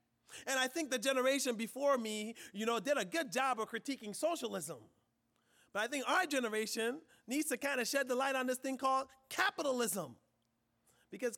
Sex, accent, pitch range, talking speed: male, American, 205-285 Hz, 180 wpm